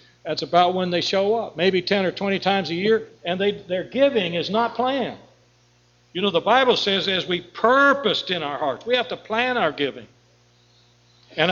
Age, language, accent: 60-79, English, American